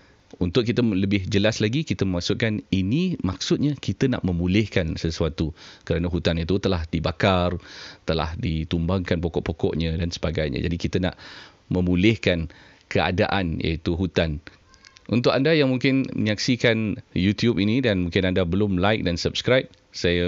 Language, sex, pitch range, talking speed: Malay, male, 85-100 Hz, 135 wpm